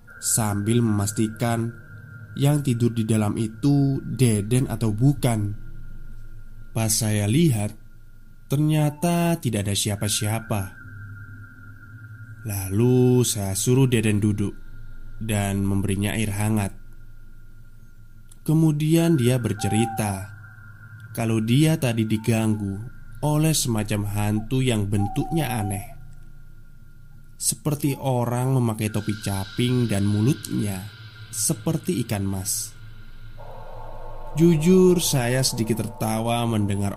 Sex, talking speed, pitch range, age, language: male, 90 wpm, 105-125 Hz, 20-39, Indonesian